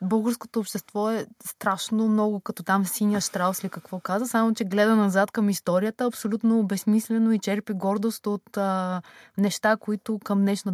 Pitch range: 180-215 Hz